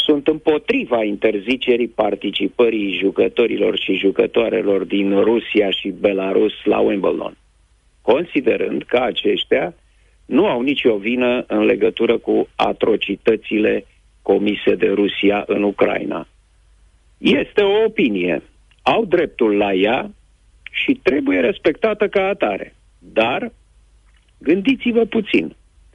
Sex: male